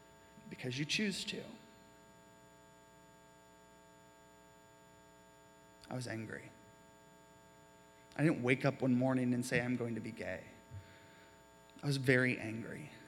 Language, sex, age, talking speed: English, male, 20-39, 110 wpm